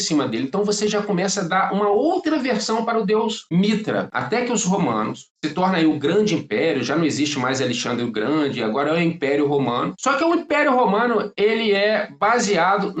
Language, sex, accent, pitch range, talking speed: Portuguese, male, Brazilian, 180-230 Hz, 210 wpm